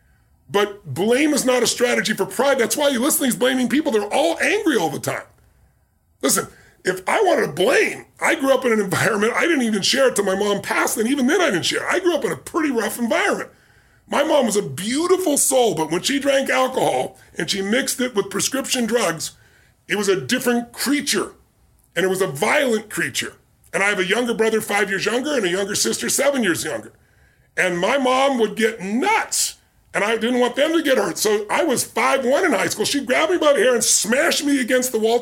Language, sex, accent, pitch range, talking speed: English, female, American, 195-260 Hz, 230 wpm